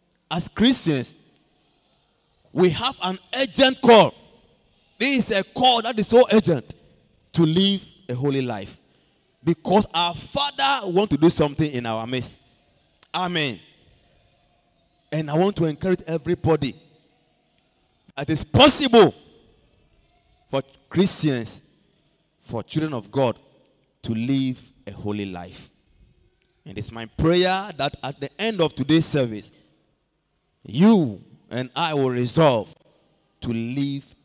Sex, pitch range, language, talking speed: male, 125-180 Hz, English, 125 wpm